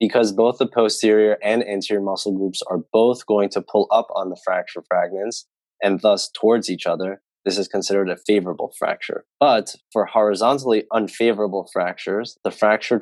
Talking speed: 165 wpm